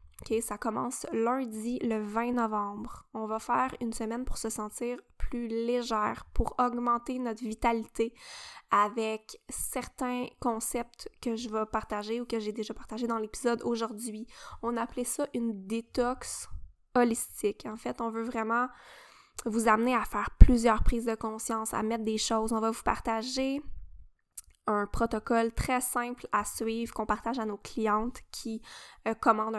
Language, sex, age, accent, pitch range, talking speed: French, female, 10-29, Canadian, 220-245 Hz, 155 wpm